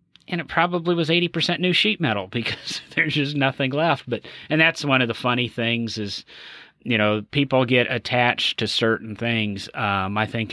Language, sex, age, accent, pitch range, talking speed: English, male, 30-49, American, 110-130 Hz, 195 wpm